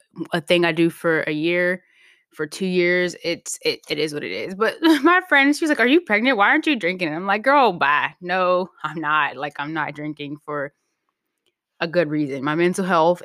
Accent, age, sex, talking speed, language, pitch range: American, 10-29, female, 220 wpm, English, 165-215 Hz